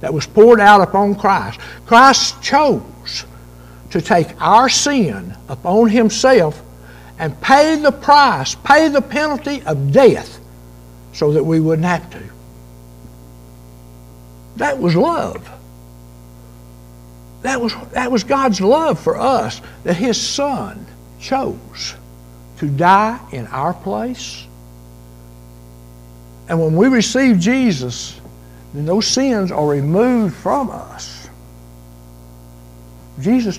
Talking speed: 110 wpm